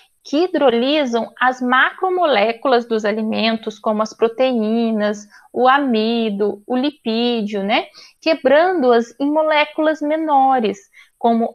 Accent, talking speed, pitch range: Brazilian, 100 wpm, 230-300 Hz